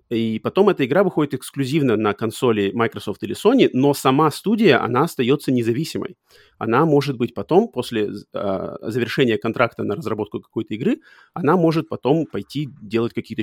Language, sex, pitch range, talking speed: Russian, male, 110-150 Hz, 155 wpm